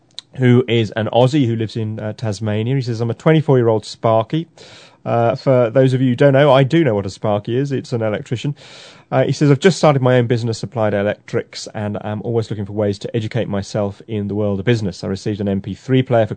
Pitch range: 110-140 Hz